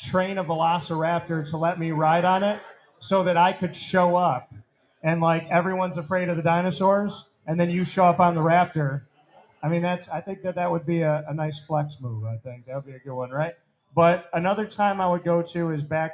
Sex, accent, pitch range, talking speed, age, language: male, American, 145-175 Hz, 230 wpm, 30-49, English